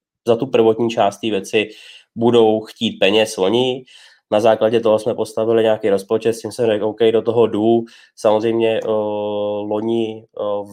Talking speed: 170 wpm